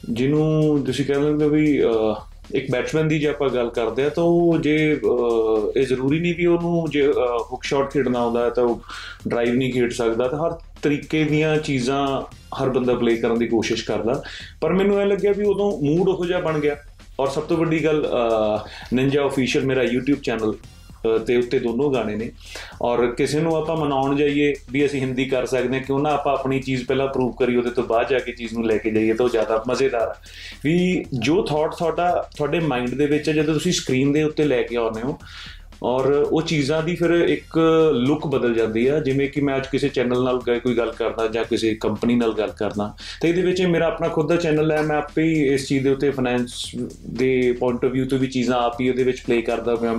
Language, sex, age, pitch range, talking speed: Punjabi, male, 30-49, 120-150 Hz, 210 wpm